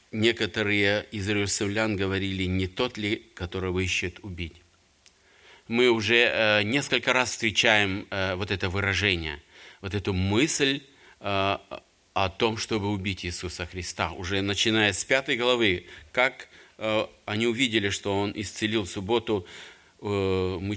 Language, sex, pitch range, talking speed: Russian, male, 95-110 Hz, 115 wpm